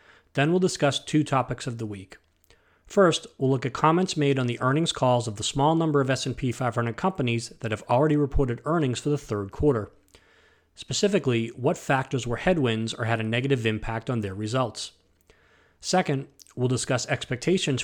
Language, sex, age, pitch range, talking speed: English, male, 30-49, 115-145 Hz, 175 wpm